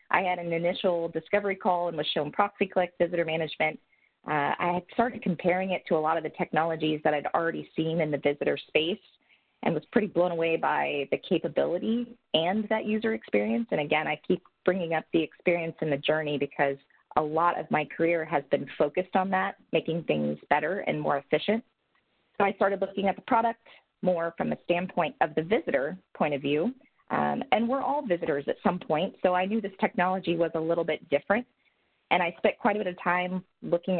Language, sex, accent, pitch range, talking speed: English, female, American, 160-200 Hz, 205 wpm